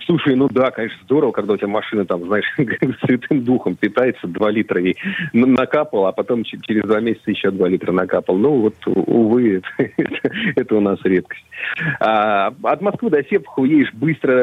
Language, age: Russian, 30-49